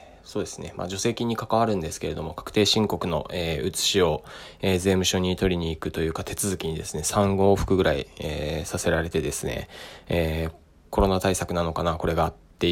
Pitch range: 80-100 Hz